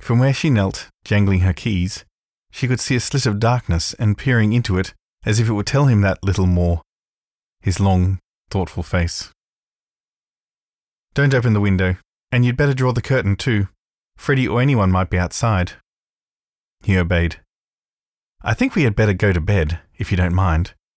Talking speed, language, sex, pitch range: 175 wpm, English, male, 95-125 Hz